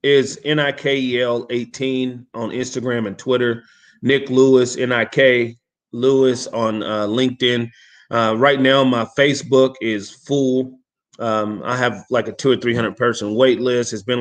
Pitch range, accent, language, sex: 115-135 Hz, American, English, male